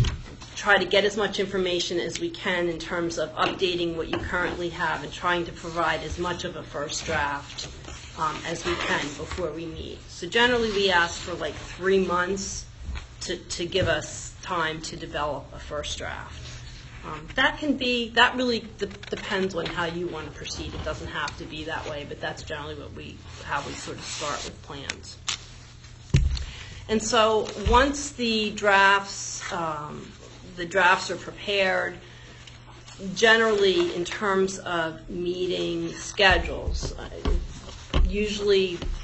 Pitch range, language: 160-190 Hz, English